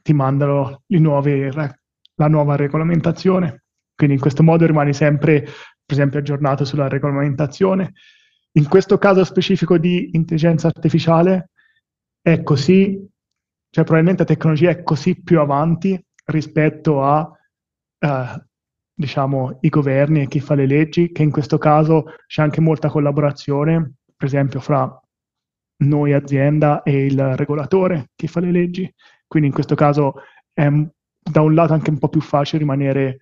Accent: native